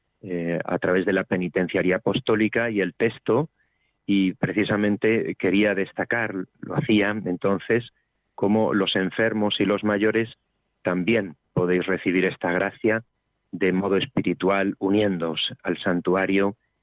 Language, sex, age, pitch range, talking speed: Spanish, male, 40-59, 95-110 Hz, 120 wpm